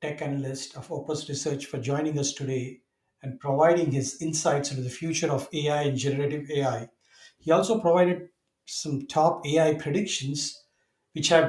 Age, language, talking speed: 60-79, English, 155 wpm